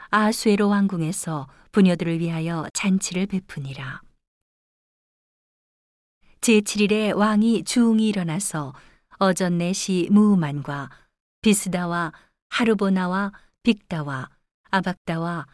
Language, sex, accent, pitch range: Korean, female, native, 170-210 Hz